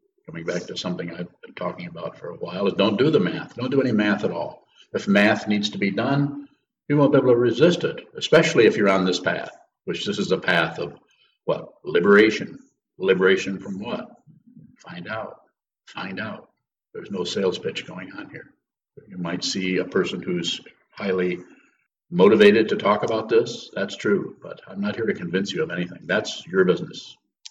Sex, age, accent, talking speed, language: male, 60-79, American, 195 wpm, English